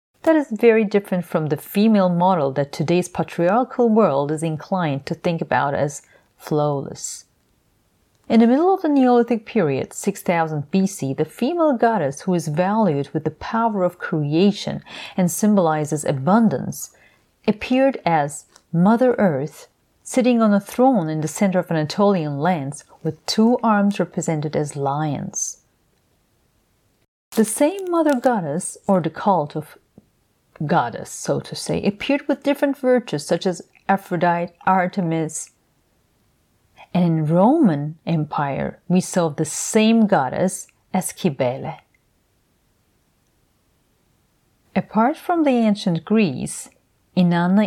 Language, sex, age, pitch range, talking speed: English, female, 40-59, 160-220 Hz, 125 wpm